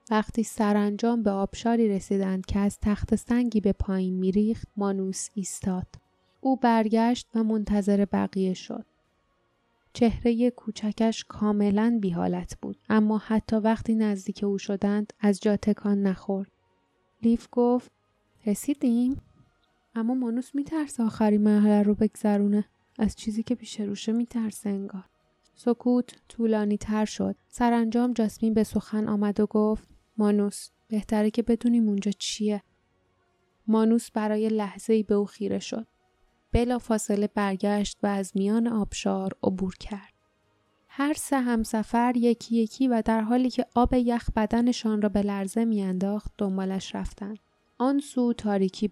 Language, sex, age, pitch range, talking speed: Persian, female, 10-29, 200-230 Hz, 130 wpm